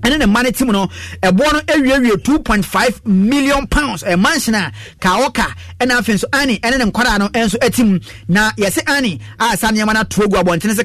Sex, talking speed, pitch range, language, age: male, 195 wpm, 195-245 Hz, English, 30-49